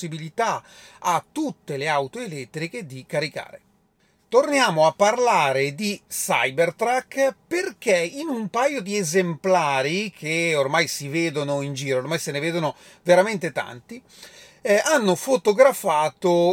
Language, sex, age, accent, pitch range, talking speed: Italian, male, 30-49, native, 155-205 Hz, 120 wpm